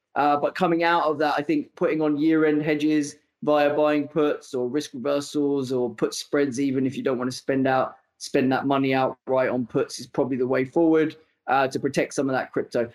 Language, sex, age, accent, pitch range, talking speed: English, male, 20-39, British, 140-160 Hz, 220 wpm